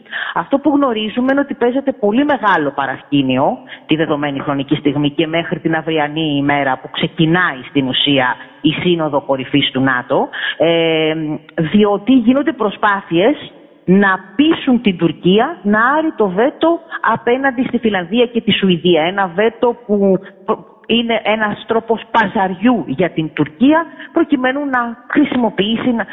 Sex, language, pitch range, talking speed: female, Greek, 160-250 Hz, 130 wpm